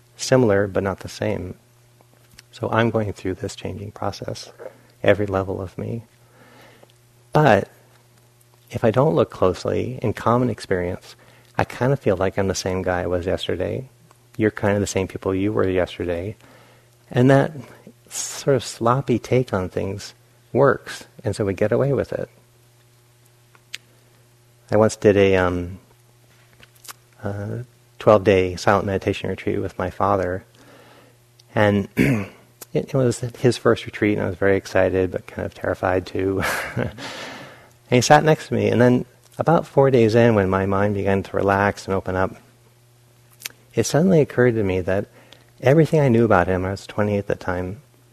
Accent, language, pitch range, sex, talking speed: American, English, 100-120 Hz, male, 160 wpm